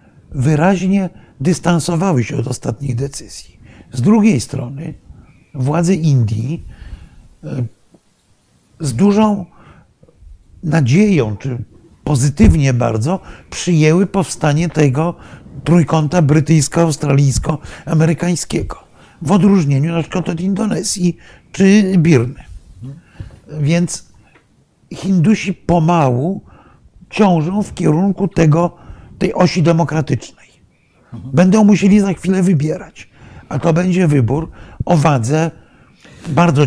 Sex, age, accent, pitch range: male, 50-69, native, 140-185 Hz